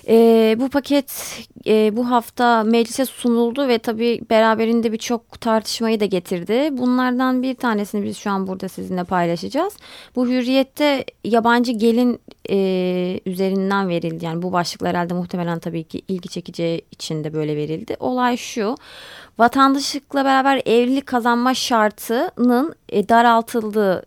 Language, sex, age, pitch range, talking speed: Turkish, female, 30-49, 185-245 Hz, 130 wpm